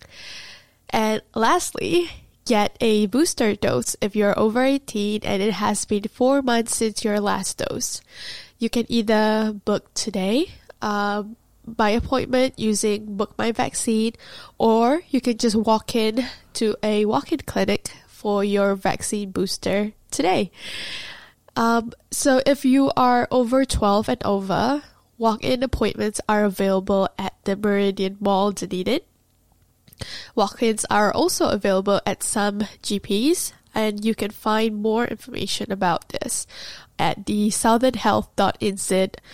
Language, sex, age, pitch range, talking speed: English, female, 10-29, 205-240 Hz, 125 wpm